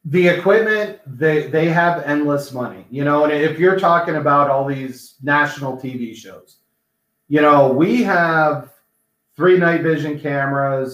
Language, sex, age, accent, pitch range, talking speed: English, male, 30-49, American, 130-160 Hz, 150 wpm